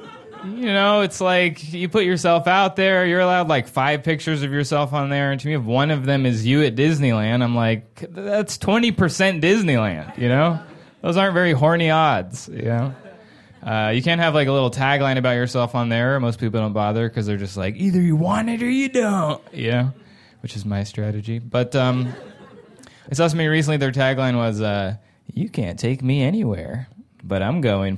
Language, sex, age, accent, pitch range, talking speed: English, male, 20-39, American, 115-160 Hz, 205 wpm